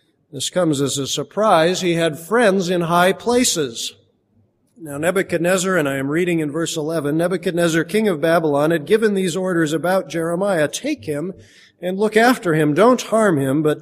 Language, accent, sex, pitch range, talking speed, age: English, American, male, 150-185 Hz, 175 wpm, 40-59